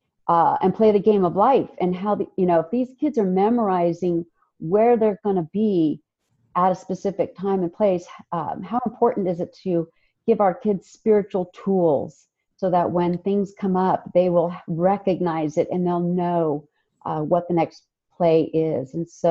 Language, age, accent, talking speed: English, 40-59, American, 185 wpm